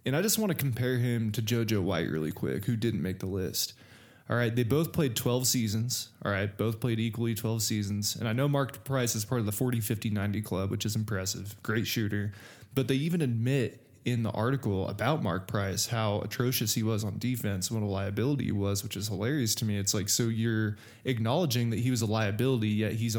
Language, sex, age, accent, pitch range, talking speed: English, male, 20-39, American, 105-125 Hz, 220 wpm